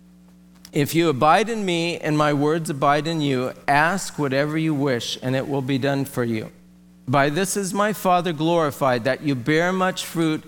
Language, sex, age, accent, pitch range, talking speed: English, male, 50-69, American, 120-155 Hz, 190 wpm